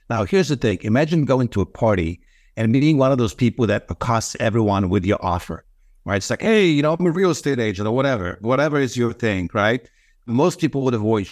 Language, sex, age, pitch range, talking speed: English, male, 60-79, 105-130 Hz, 230 wpm